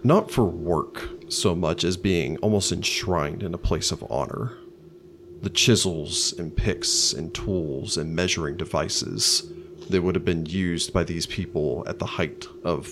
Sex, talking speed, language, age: male, 165 wpm, English, 30-49